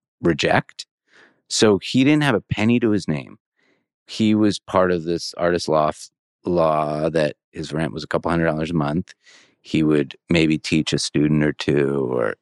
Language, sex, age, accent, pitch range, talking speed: English, male, 30-49, American, 80-110 Hz, 180 wpm